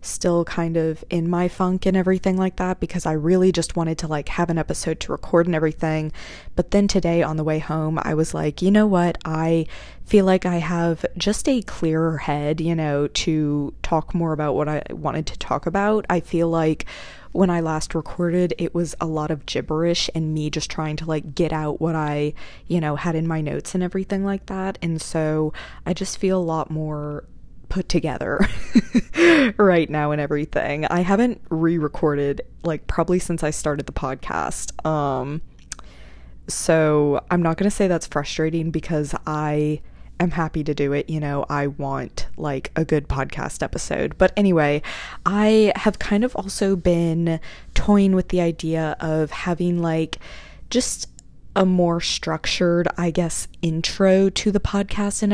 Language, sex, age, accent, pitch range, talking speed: English, female, 20-39, American, 155-185 Hz, 180 wpm